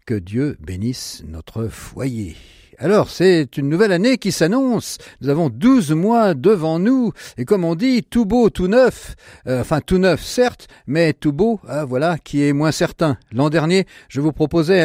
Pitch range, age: 115-180 Hz, 50-69